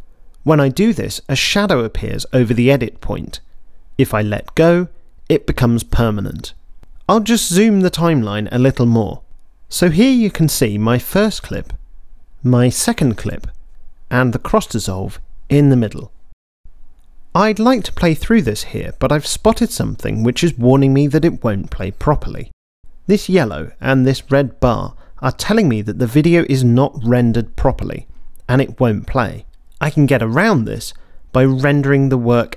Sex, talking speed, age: male, 170 wpm, 40-59